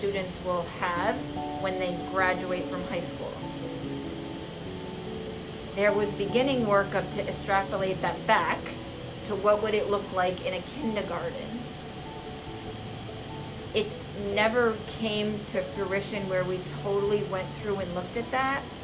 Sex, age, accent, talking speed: female, 30-49, American, 130 wpm